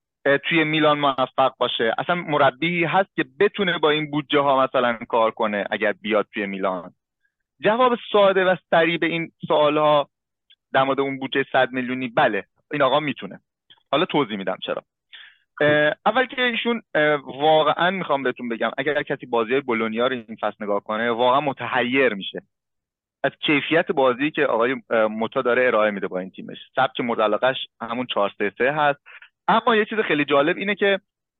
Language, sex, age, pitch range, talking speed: Persian, male, 30-49, 130-180 Hz, 160 wpm